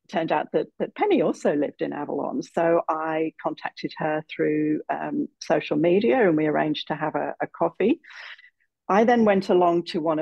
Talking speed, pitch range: 180 wpm, 160-215 Hz